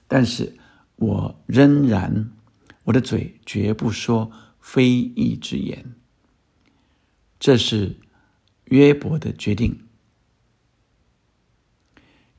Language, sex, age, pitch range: Chinese, male, 50-69, 105-130 Hz